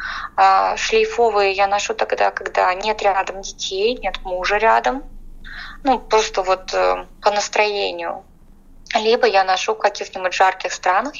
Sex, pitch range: female, 190-230 Hz